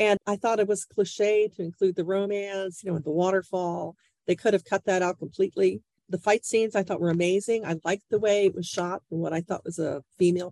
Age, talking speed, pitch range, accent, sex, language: 50-69, 245 wpm, 160-200 Hz, American, female, English